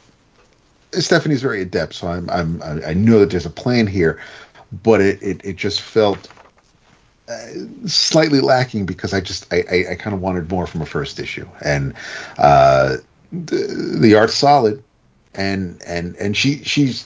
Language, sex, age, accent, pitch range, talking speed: English, male, 40-59, American, 85-115 Hz, 160 wpm